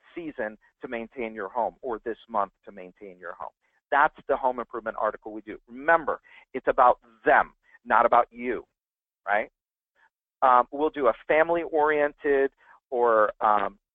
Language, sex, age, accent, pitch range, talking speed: English, male, 50-69, American, 120-150 Hz, 145 wpm